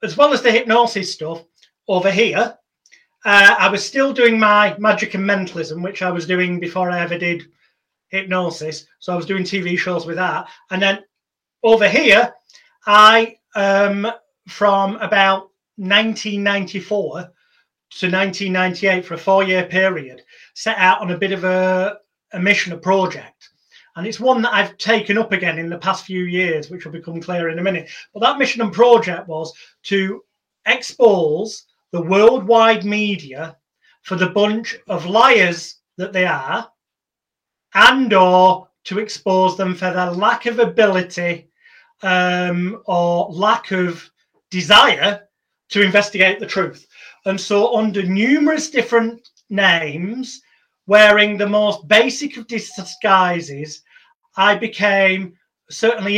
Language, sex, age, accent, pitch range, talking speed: English, male, 30-49, British, 180-215 Hz, 140 wpm